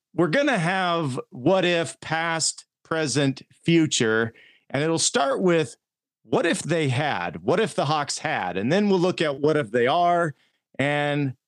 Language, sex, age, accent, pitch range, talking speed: English, male, 40-59, American, 125-170 Hz, 165 wpm